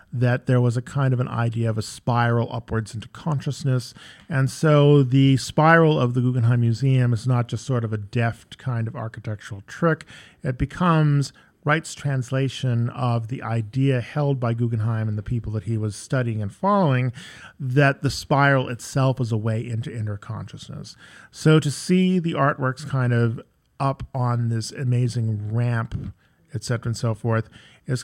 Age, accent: 40-59, American